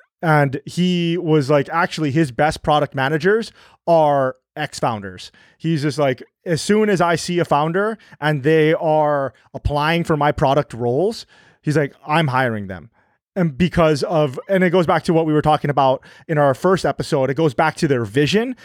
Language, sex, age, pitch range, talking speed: English, male, 30-49, 140-170 Hz, 185 wpm